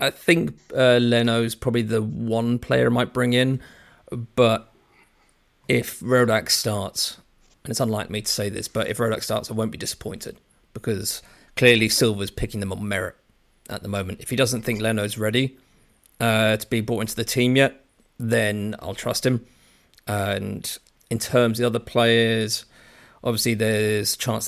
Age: 30-49